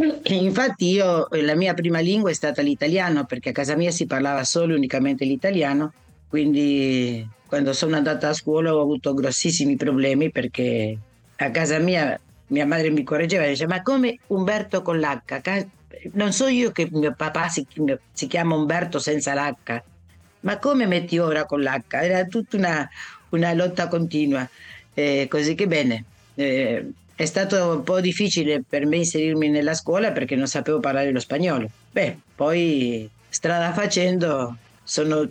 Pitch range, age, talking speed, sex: 135-170 Hz, 50-69, 160 wpm, female